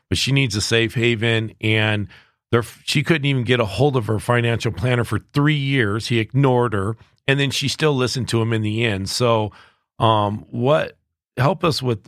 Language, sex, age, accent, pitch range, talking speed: English, male, 40-59, American, 110-130 Hz, 200 wpm